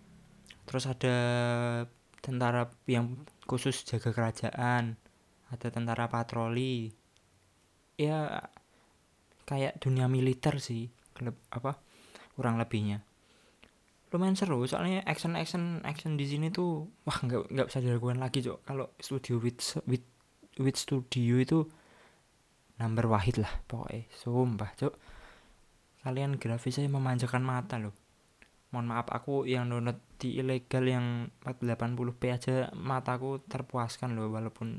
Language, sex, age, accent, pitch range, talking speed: Indonesian, male, 20-39, native, 115-135 Hz, 115 wpm